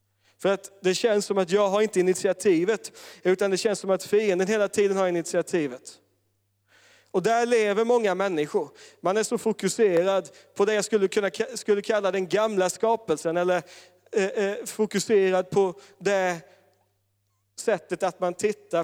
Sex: male